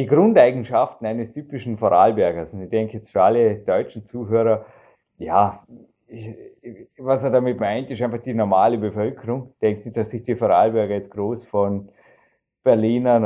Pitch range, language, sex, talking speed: 105-125 Hz, German, male, 155 wpm